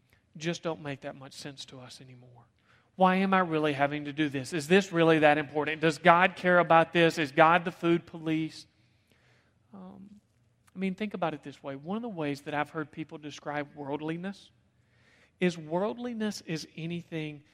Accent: American